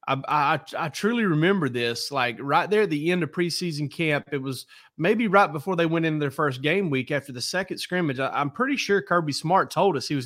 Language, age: English, 30-49